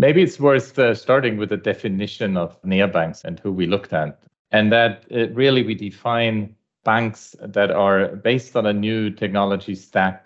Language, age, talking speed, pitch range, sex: English, 30-49, 175 wpm, 90-115 Hz, male